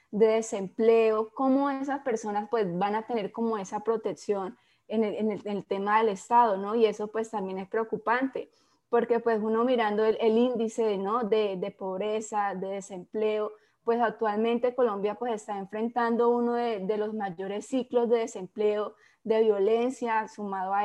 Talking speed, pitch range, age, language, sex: 170 wpm, 210-235 Hz, 20-39, Spanish, female